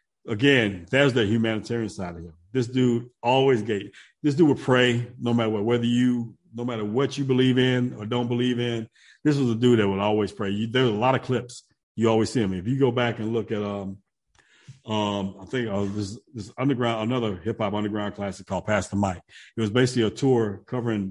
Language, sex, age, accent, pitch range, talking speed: English, male, 50-69, American, 105-125 Hz, 220 wpm